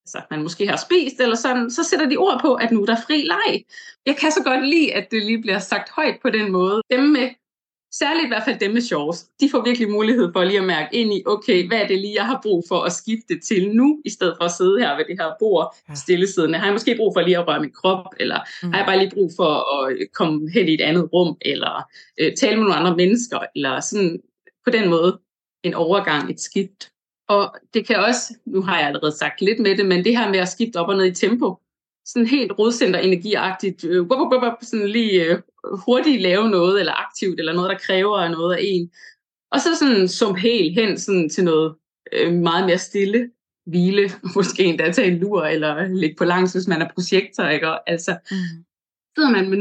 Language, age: Danish, 30-49